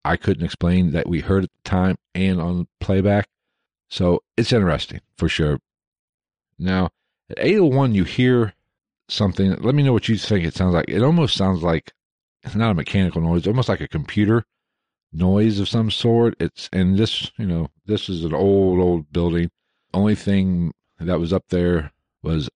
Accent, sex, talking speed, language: American, male, 180 wpm, English